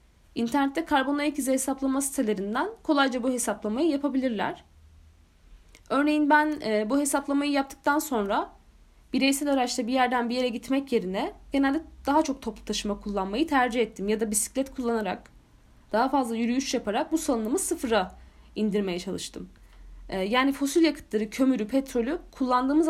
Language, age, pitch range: Turkish, 10-29, 220-285 Hz